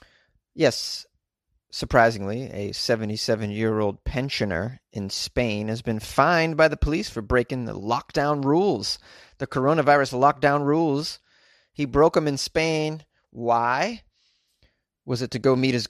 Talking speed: 130 wpm